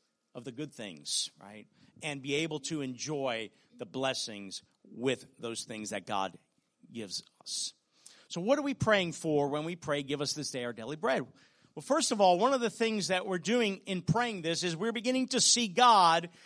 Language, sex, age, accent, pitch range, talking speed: English, male, 50-69, American, 140-200 Hz, 200 wpm